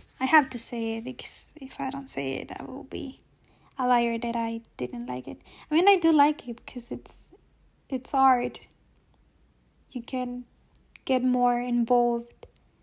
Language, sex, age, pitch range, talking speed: English, female, 10-29, 245-270 Hz, 170 wpm